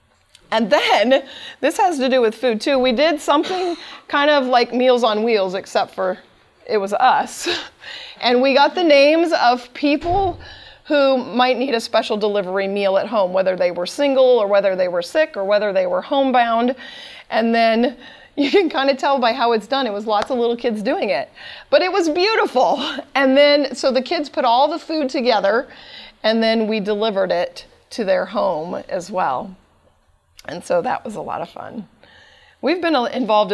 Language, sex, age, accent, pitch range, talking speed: English, female, 30-49, American, 210-275 Hz, 195 wpm